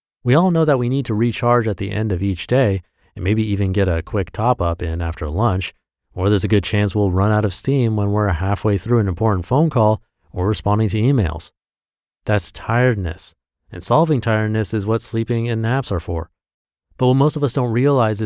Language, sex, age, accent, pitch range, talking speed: English, male, 30-49, American, 90-120 Hz, 215 wpm